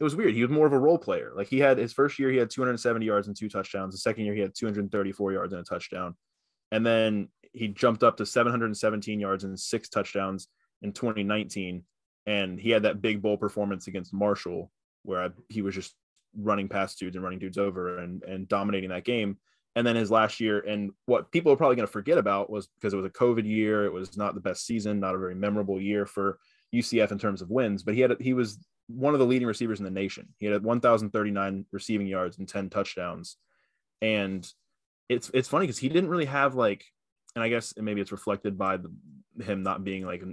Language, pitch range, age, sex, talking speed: English, 100-115 Hz, 20-39, male, 225 wpm